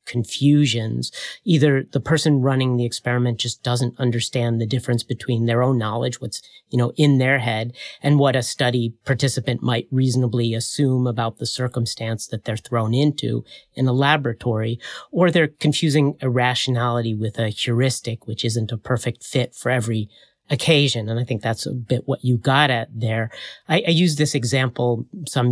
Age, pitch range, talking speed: 30-49, 115-140 Hz, 170 wpm